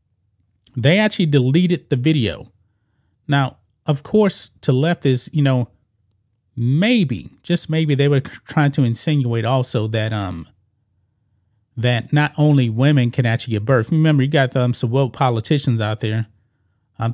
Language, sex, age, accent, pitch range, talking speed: English, male, 30-49, American, 105-150 Hz, 145 wpm